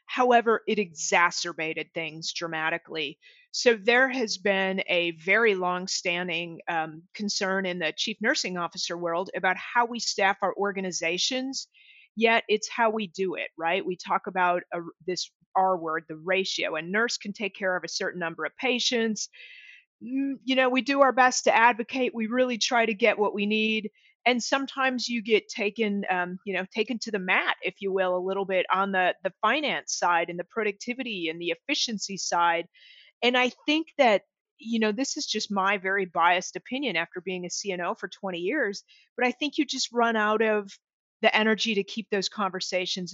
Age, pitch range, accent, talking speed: 40-59, 185-235 Hz, American, 185 wpm